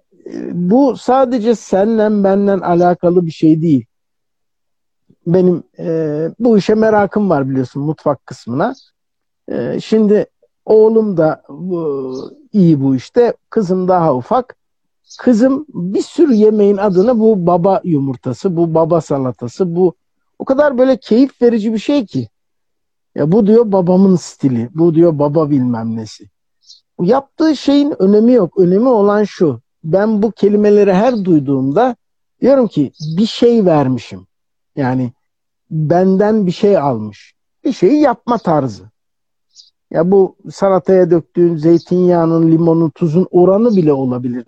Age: 60-79